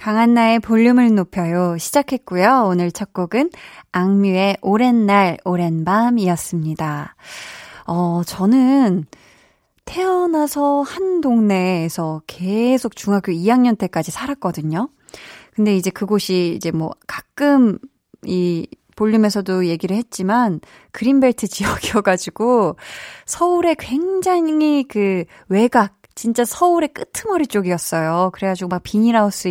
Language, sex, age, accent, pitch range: Korean, female, 20-39, native, 180-240 Hz